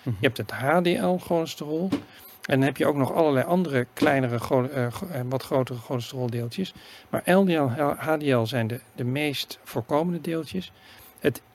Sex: male